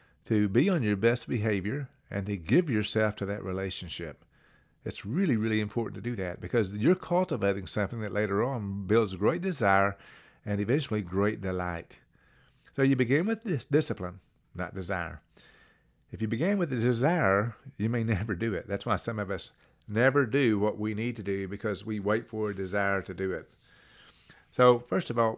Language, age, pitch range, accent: English, 50-69, 95-120 Hz, American